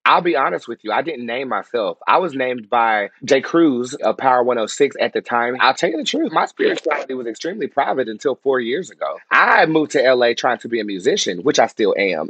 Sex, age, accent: male, 30-49, American